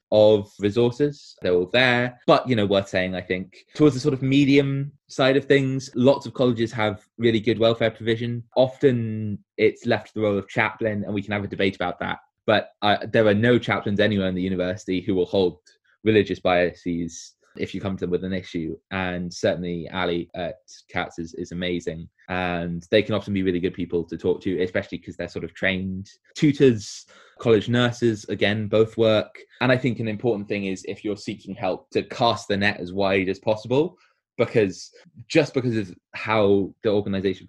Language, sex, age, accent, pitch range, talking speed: English, male, 20-39, British, 95-115 Hz, 200 wpm